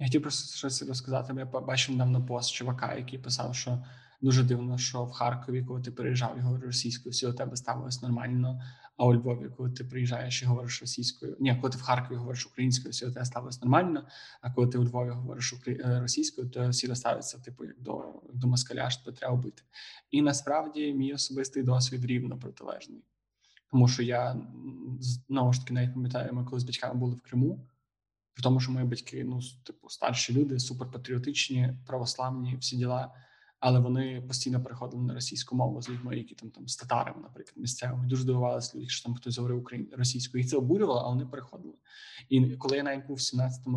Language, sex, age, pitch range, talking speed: Ukrainian, male, 20-39, 125-130 Hz, 190 wpm